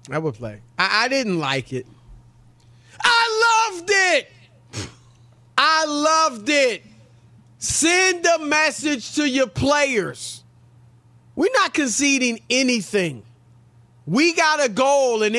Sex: male